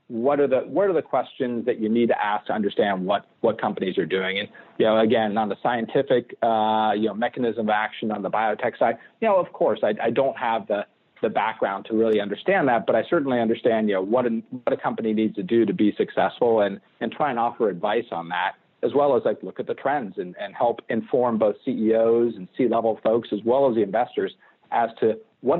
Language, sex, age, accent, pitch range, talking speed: English, male, 40-59, American, 110-135 Hz, 240 wpm